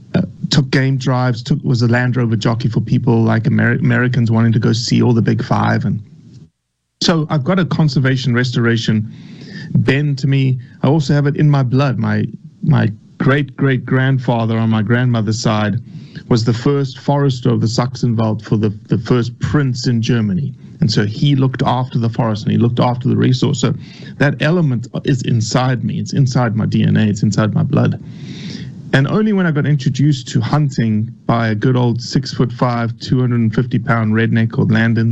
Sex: male